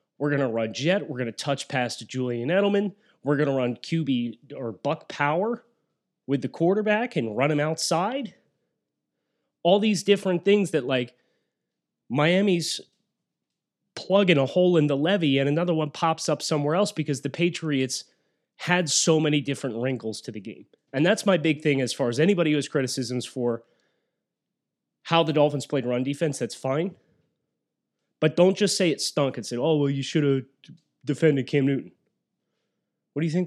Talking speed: 180 wpm